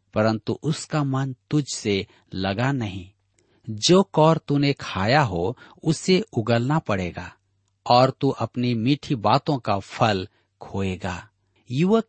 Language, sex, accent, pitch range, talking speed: Hindi, male, native, 105-150 Hz, 115 wpm